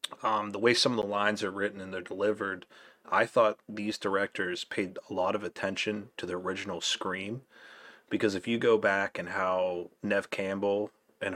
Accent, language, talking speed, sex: American, English, 185 wpm, male